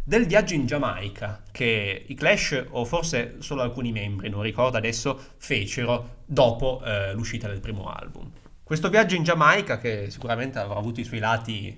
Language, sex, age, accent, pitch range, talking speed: Italian, male, 20-39, native, 110-140 Hz, 170 wpm